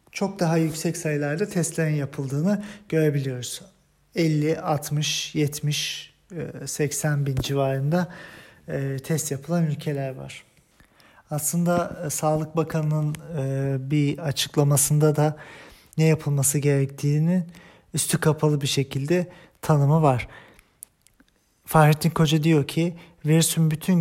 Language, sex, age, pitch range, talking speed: German, male, 40-59, 140-160 Hz, 95 wpm